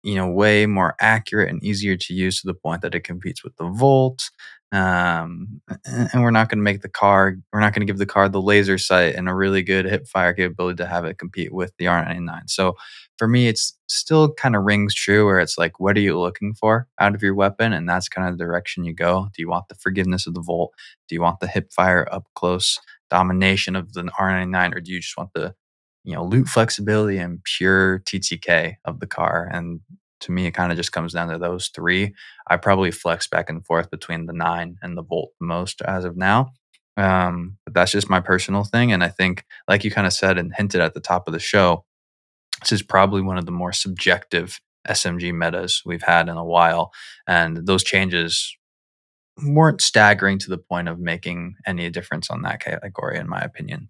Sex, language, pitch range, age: male, English, 85-105 Hz, 20-39